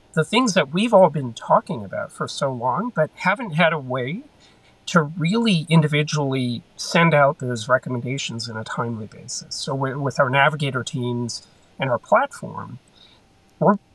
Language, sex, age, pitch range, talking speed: English, male, 40-59, 140-170 Hz, 160 wpm